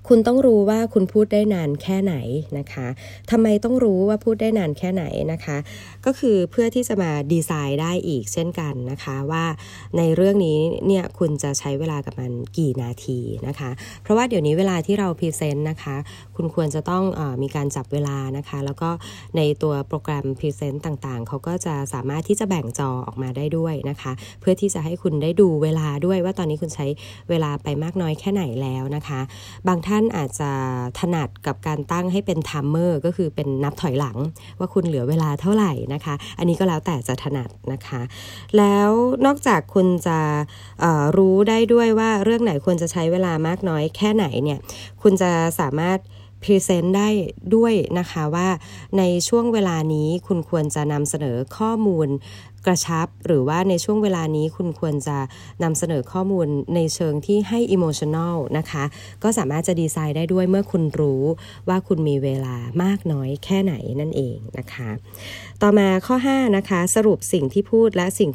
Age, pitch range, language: 20-39, 140-190 Hz, Thai